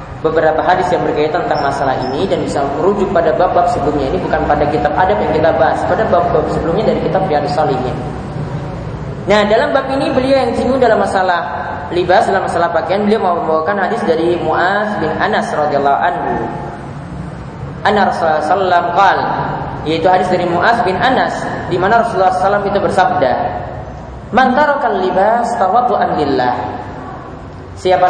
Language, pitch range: English, 150-220 Hz